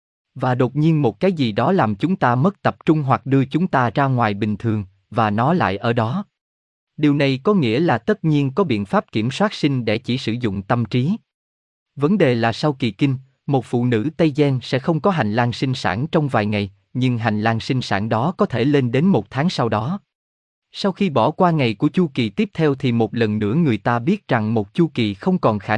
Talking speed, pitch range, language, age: 240 wpm, 110-155 Hz, Vietnamese, 20-39